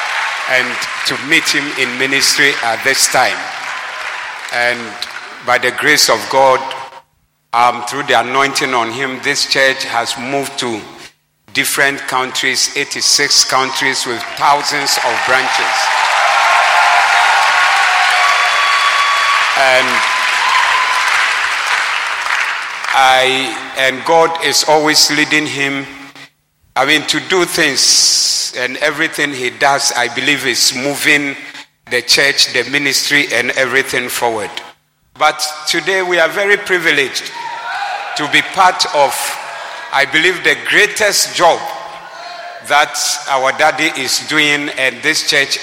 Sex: male